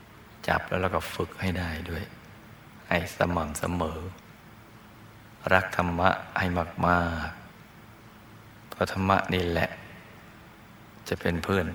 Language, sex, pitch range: Thai, male, 85-95 Hz